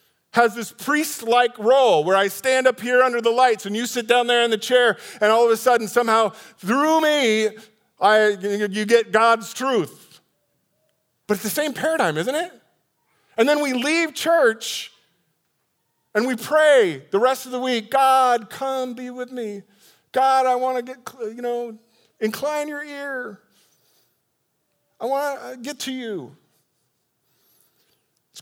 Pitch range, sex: 180-255 Hz, male